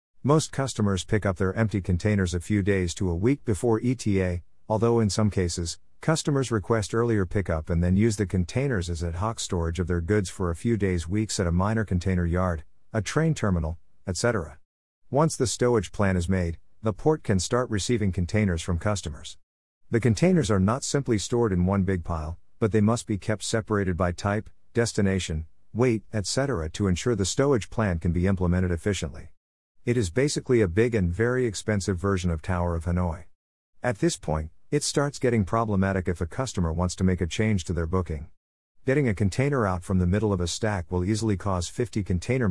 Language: English